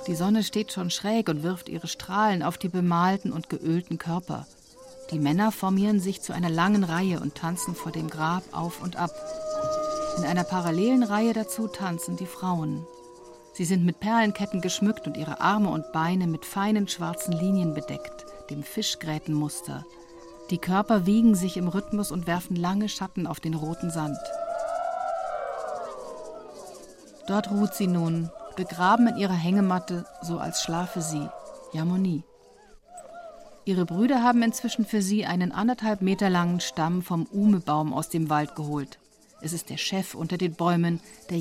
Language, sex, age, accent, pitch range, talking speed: German, female, 50-69, German, 170-215 Hz, 155 wpm